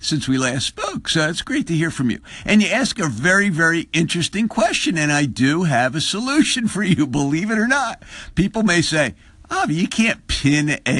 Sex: male